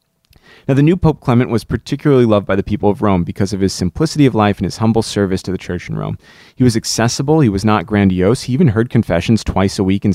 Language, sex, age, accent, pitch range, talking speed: English, male, 30-49, American, 95-125 Hz, 255 wpm